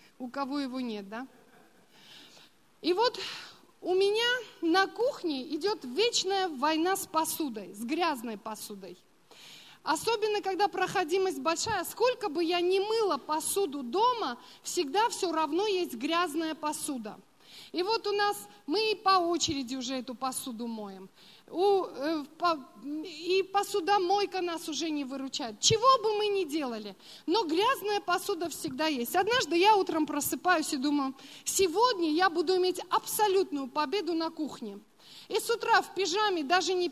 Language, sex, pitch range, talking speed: Russian, female, 300-395 Hz, 140 wpm